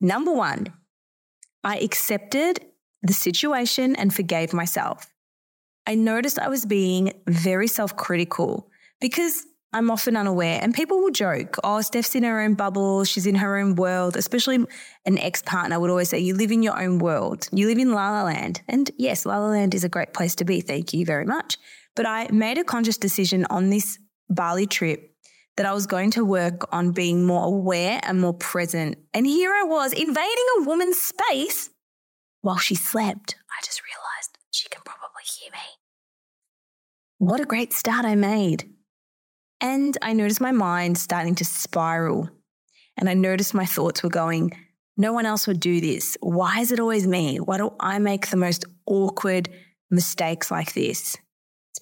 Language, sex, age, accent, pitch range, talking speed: English, female, 20-39, Australian, 180-225 Hz, 175 wpm